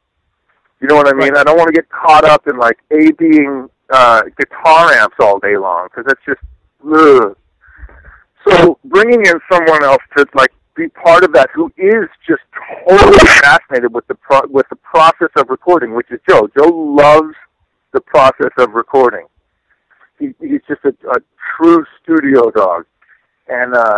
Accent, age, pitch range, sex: American, 50-69, 125-180 Hz, male